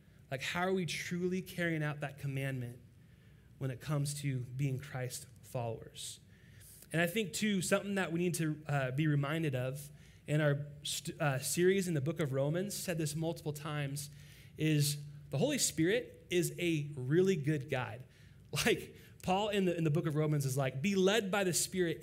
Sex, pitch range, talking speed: male, 135-160 Hz, 185 wpm